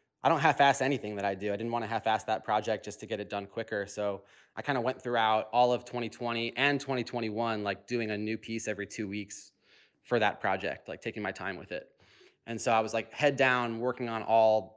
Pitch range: 100-120 Hz